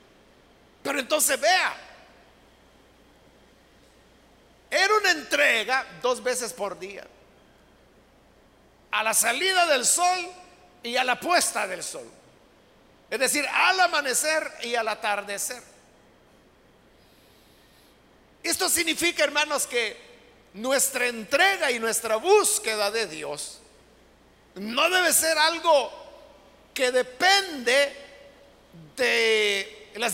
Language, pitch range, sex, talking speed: Spanish, 240-340 Hz, male, 95 wpm